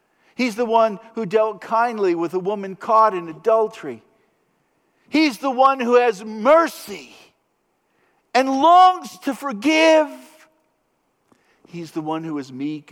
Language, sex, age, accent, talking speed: English, male, 50-69, American, 130 wpm